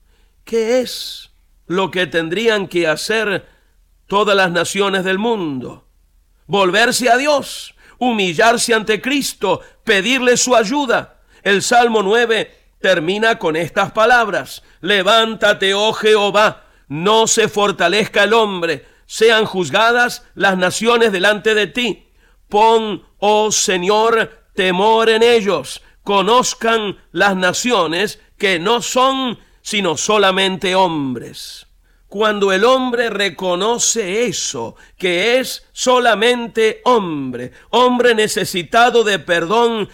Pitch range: 190-235 Hz